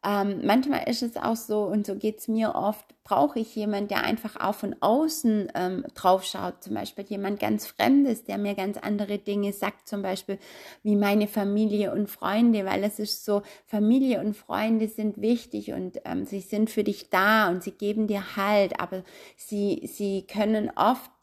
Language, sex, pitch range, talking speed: German, female, 200-225 Hz, 190 wpm